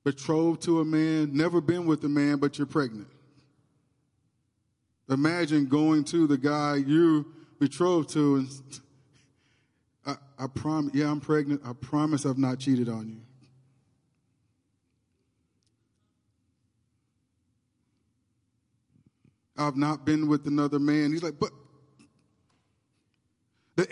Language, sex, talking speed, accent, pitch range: English, male, 110 wpm, American, 130-190 Hz